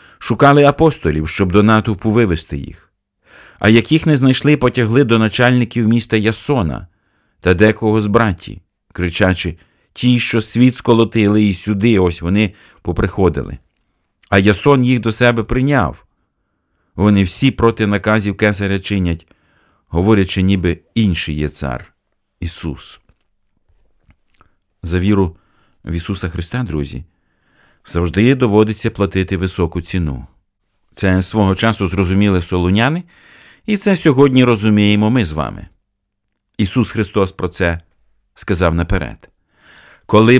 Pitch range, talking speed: 90-120 Hz, 120 wpm